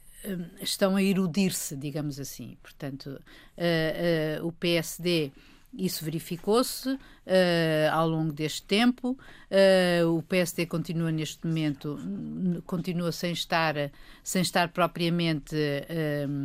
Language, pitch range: Portuguese, 155-185 Hz